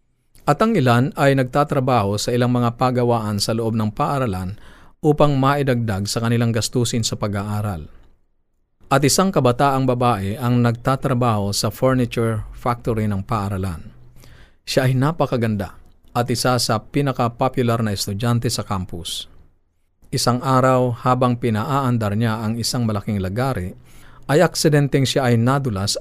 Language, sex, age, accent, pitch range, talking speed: Filipino, male, 40-59, native, 105-130 Hz, 130 wpm